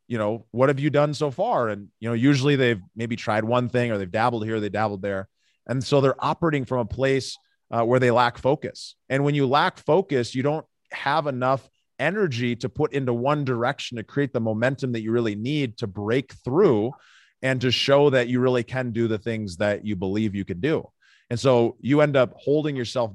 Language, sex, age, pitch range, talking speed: English, male, 30-49, 110-135 Hz, 220 wpm